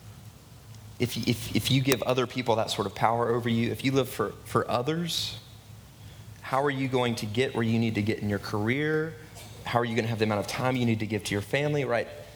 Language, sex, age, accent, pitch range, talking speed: English, male, 30-49, American, 110-135 Hz, 245 wpm